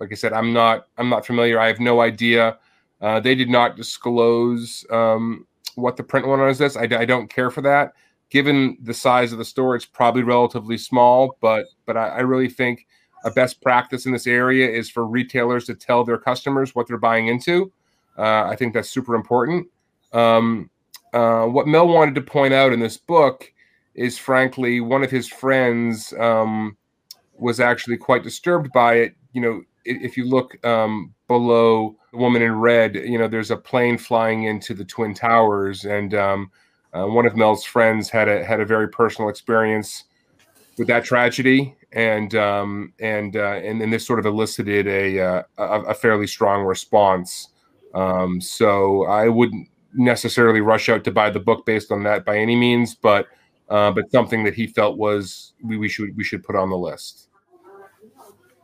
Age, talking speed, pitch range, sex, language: 30-49, 185 wpm, 110-125 Hz, male, English